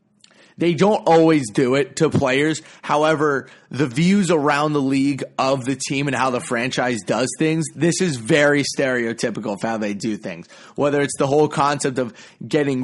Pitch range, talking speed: 130-160 Hz, 180 wpm